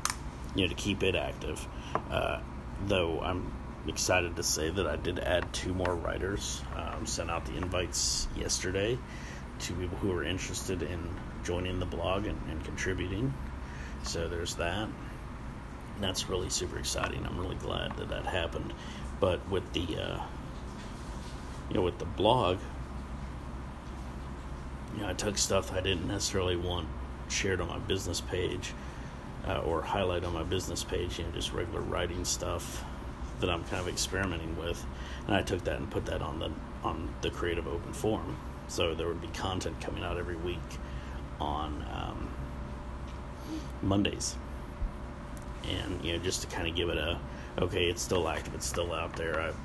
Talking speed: 165 wpm